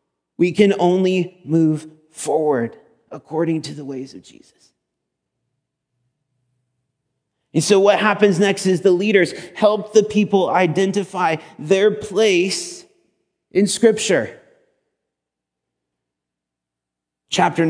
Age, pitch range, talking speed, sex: 30-49, 125-195 Hz, 95 wpm, male